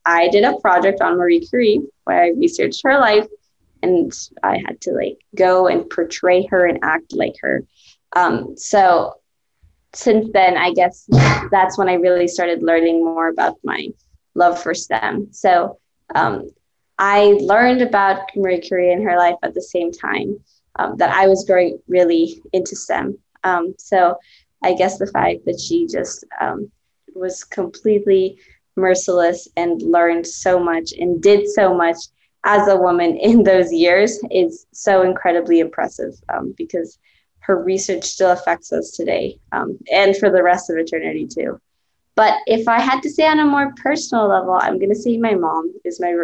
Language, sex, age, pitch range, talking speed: English, female, 20-39, 170-210 Hz, 170 wpm